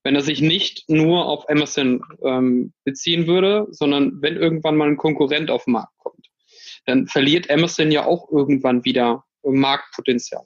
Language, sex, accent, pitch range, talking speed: German, male, German, 140-175 Hz, 160 wpm